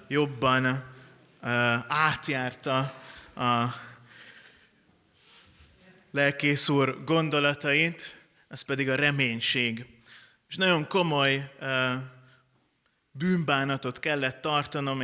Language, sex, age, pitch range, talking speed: Hungarian, male, 20-39, 125-145 Hz, 60 wpm